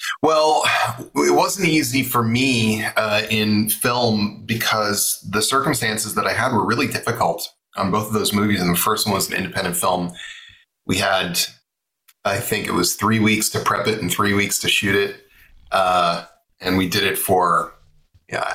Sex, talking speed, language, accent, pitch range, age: male, 180 wpm, English, American, 95-120 Hz, 30-49